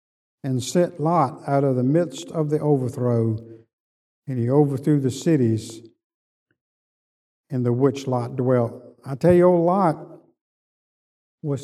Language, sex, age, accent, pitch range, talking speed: English, male, 50-69, American, 125-165 Hz, 135 wpm